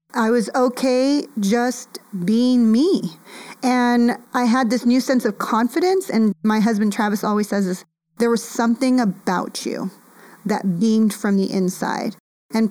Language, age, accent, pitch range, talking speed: English, 30-49, American, 200-240 Hz, 145 wpm